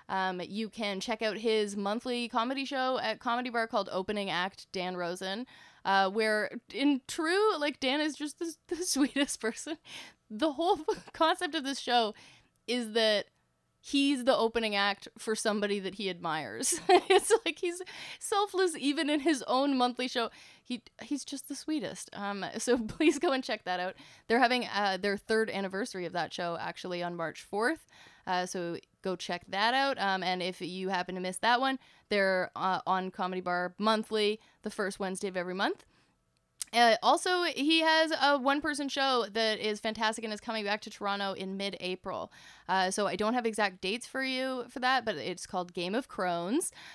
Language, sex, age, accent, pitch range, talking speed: English, female, 10-29, American, 190-270 Hz, 185 wpm